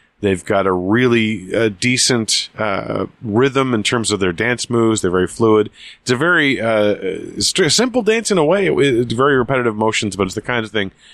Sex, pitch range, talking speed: male, 100-125 Hz, 200 wpm